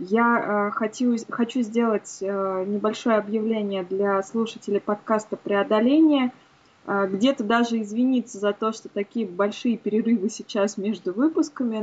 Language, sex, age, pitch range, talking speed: Russian, female, 20-39, 210-250 Hz, 105 wpm